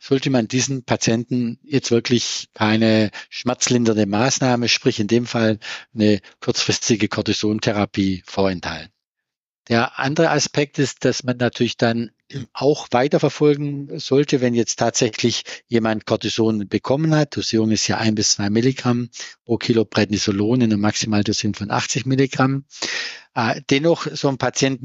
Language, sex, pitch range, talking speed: German, male, 110-140 Hz, 135 wpm